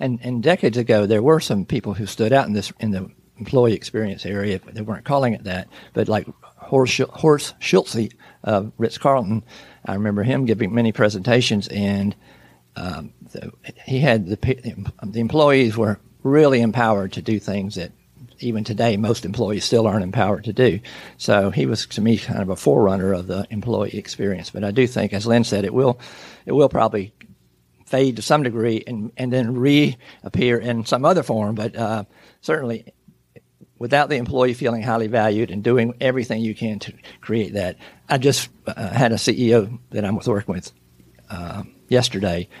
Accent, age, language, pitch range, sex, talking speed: American, 50-69, English, 100-125 Hz, male, 180 wpm